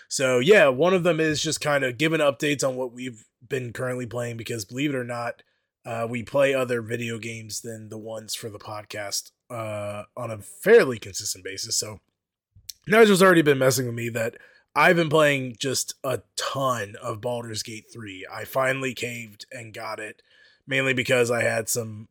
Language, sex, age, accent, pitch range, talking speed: English, male, 20-39, American, 110-130 Hz, 185 wpm